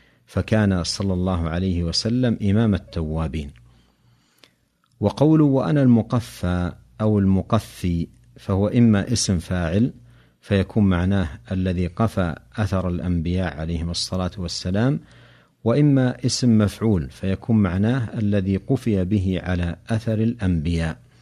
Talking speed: 100 wpm